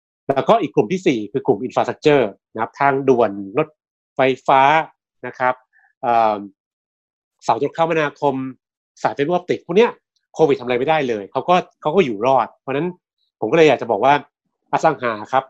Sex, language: male, Thai